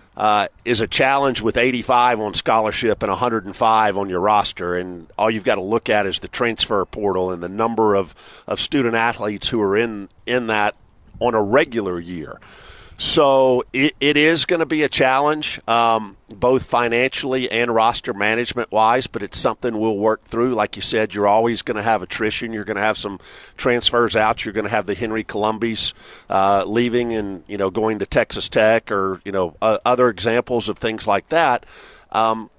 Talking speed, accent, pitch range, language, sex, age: 195 wpm, American, 105-120 Hz, English, male, 50-69